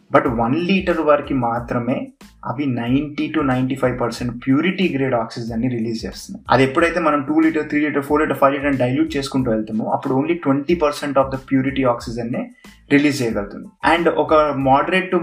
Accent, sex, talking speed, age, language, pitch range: native, male, 170 wpm, 20-39, Telugu, 125-155 Hz